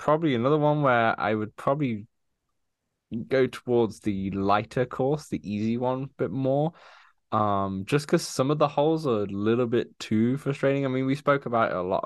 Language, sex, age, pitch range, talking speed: English, male, 10-29, 100-130 Hz, 195 wpm